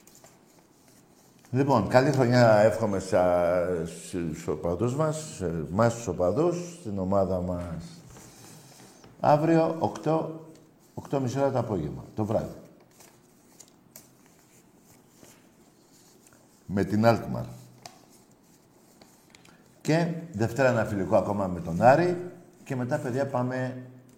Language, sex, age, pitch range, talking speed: Greek, male, 50-69, 95-140 Hz, 85 wpm